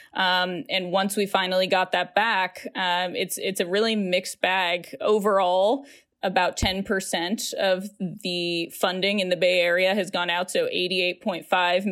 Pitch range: 180-210 Hz